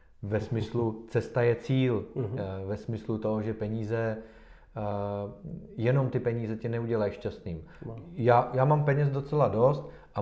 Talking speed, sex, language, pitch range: 135 wpm, male, Czech, 105-125 Hz